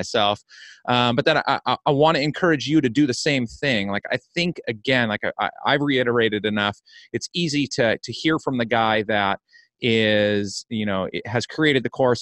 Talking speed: 195 wpm